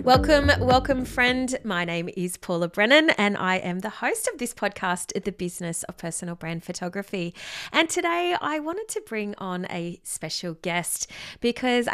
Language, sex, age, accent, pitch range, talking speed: English, female, 30-49, Australian, 190-255 Hz, 165 wpm